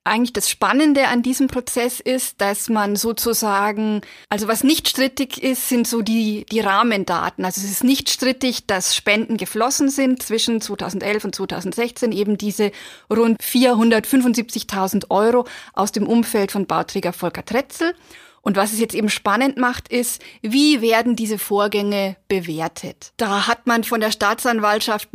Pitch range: 205-250 Hz